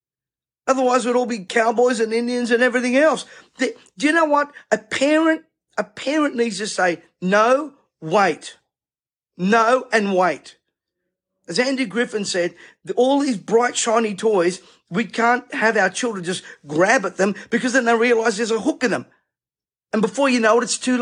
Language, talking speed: English, 170 wpm